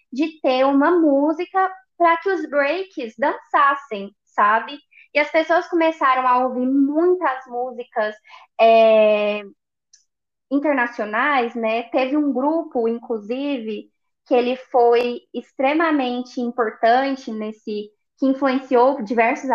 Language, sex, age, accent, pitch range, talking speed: Portuguese, female, 10-29, Brazilian, 230-295 Hz, 105 wpm